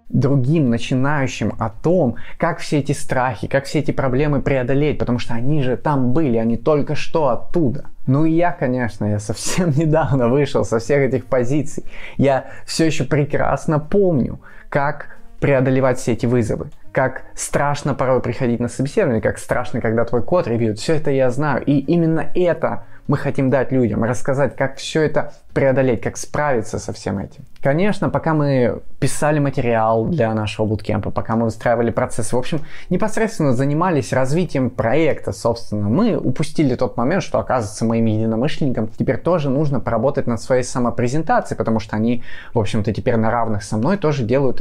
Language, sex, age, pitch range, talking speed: Russian, male, 20-39, 115-150 Hz, 165 wpm